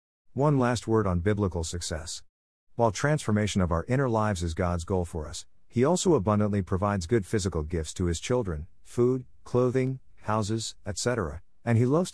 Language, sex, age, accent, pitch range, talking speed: English, male, 50-69, American, 90-115 Hz, 170 wpm